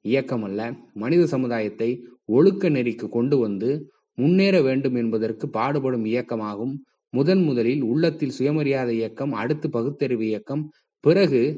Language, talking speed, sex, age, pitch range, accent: Tamil, 110 wpm, male, 20-39, 115-155 Hz, native